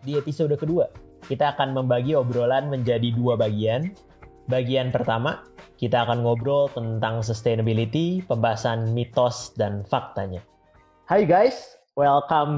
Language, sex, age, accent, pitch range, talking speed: Indonesian, male, 20-39, native, 125-150 Hz, 115 wpm